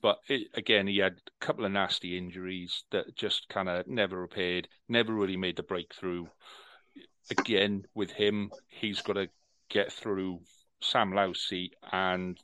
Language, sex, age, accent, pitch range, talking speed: English, male, 40-59, British, 90-100 Hz, 155 wpm